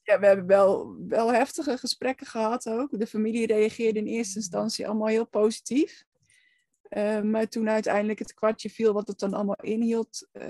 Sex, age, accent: female, 20-39, Dutch